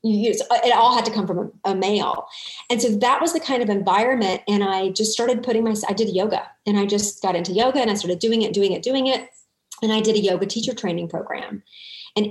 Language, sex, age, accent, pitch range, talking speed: English, female, 40-59, American, 195-250 Hz, 265 wpm